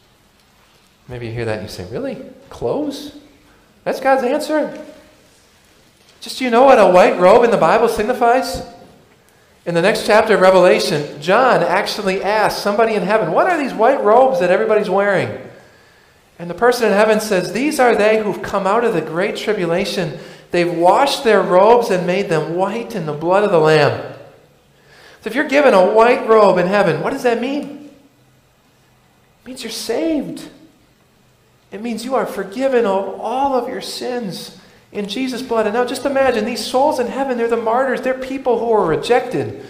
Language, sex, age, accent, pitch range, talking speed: English, male, 40-59, American, 185-255 Hz, 180 wpm